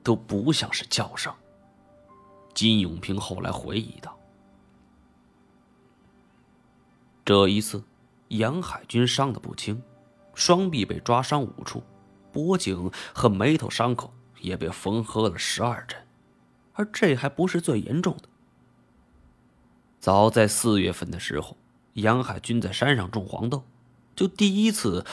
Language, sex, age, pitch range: Chinese, male, 20-39, 100-135 Hz